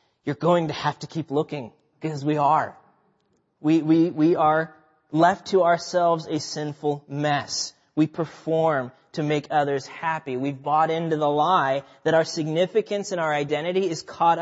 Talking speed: 160 wpm